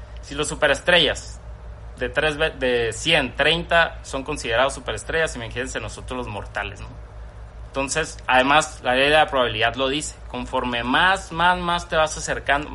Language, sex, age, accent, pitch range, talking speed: Spanish, male, 30-49, Mexican, 125-160 Hz, 150 wpm